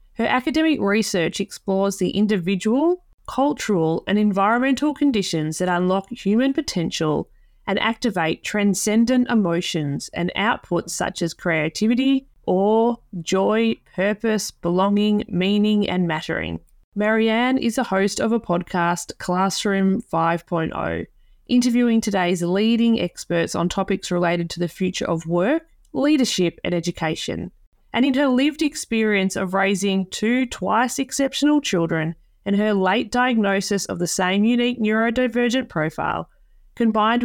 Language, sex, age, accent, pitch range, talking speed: English, female, 20-39, Australian, 180-235 Hz, 120 wpm